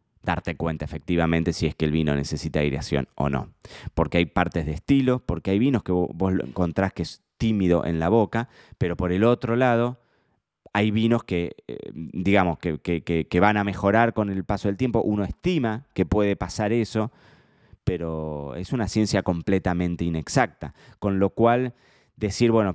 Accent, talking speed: Argentinian, 180 wpm